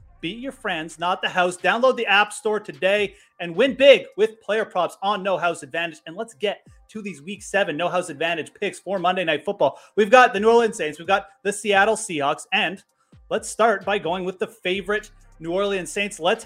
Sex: male